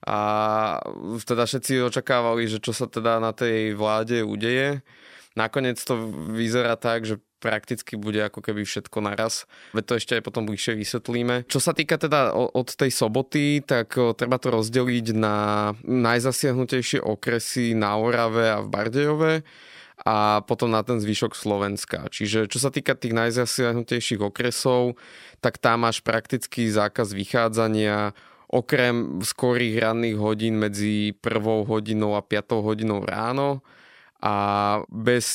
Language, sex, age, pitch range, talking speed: Slovak, male, 20-39, 105-120 Hz, 140 wpm